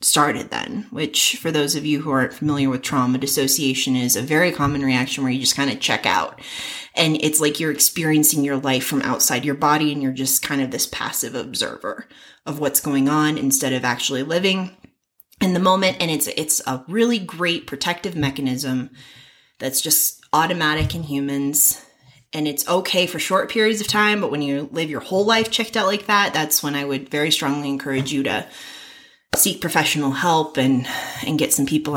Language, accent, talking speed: English, American, 195 wpm